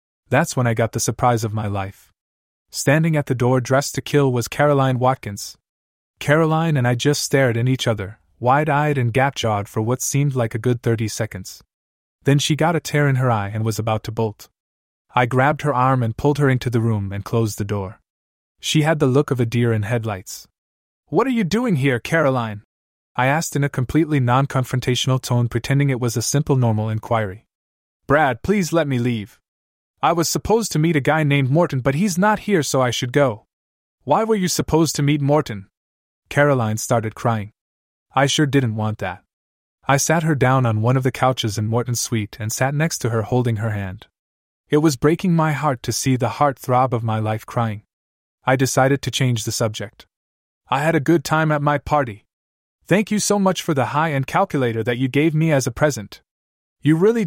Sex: male